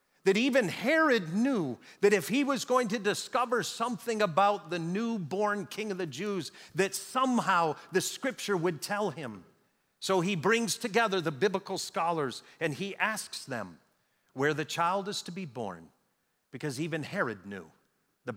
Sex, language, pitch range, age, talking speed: male, English, 160-210 Hz, 50-69, 160 wpm